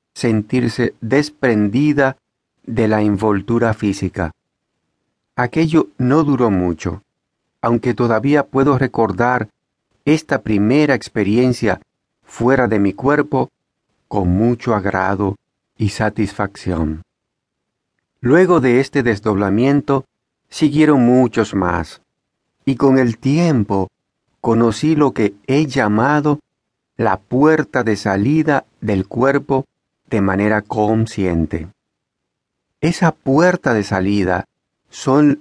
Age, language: 50-69, Spanish